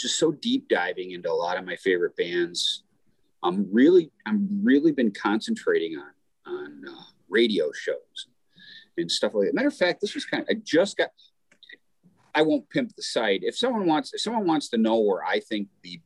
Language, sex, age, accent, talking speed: English, male, 40-59, American, 200 wpm